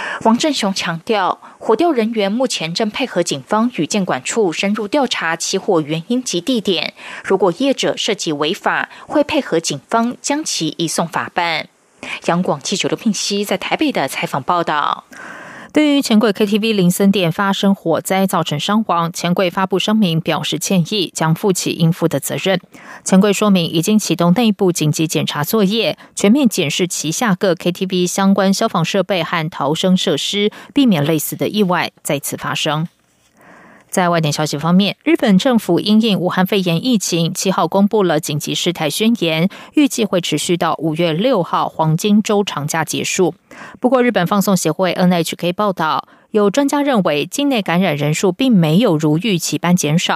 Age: 20-39